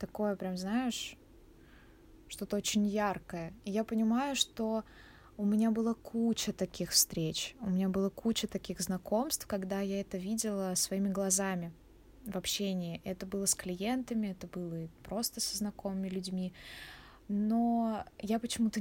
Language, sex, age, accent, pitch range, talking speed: Russian, female, 20-39, native, 190-230 Hz, 135 wpm